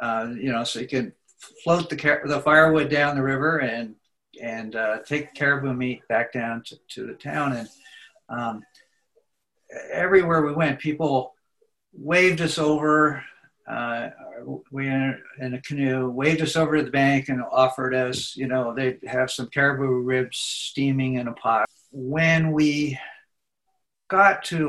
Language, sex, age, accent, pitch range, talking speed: English, male, 60-79, American, 125-150 Hz, 155 wpm